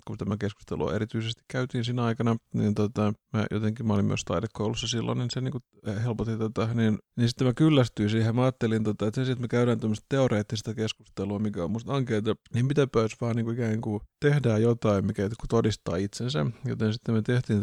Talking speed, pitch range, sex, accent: 190 wpm, 110-125 Hz, male, native